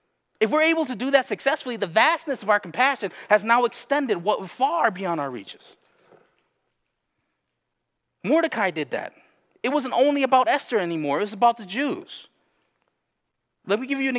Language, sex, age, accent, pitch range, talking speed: English, male, 30-49, American, 200-265 Hz, 170 wpm